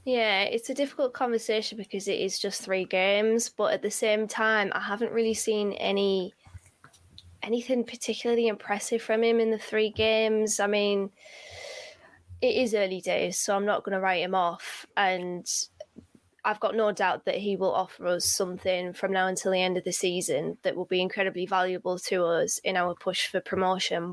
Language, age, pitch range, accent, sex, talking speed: English, 20-39, 185-210 Hz, British, female, 185 wpm